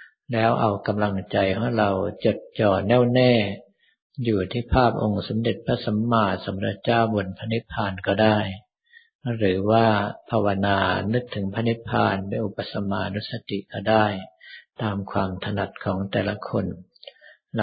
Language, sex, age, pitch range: Thai, male, 60-79, 100-115 Hz